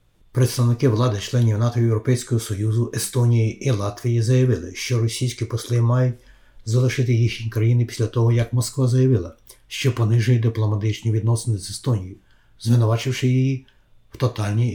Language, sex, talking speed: Ukrainian, male, 130 wpm